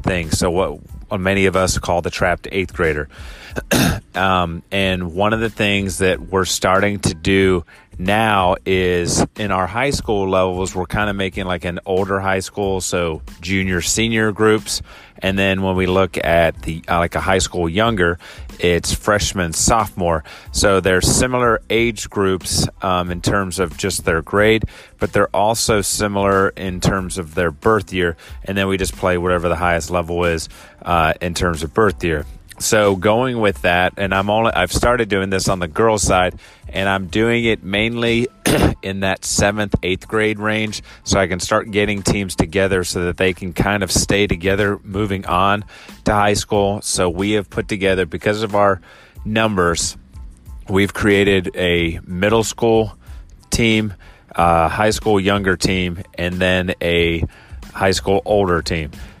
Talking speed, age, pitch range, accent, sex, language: 175 wpm, 30-49, 90-105 Hz, American, male, English